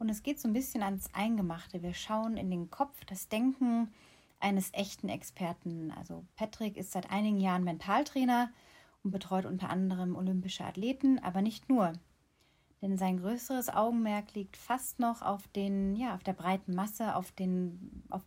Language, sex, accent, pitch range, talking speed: German, female, German, 185-225 Hz, 155 wpm